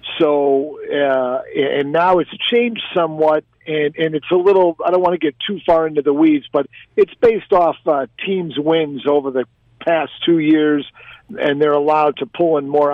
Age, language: 50-69, English